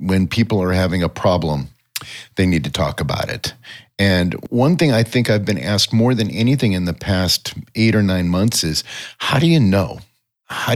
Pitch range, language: 90-115 Hz, English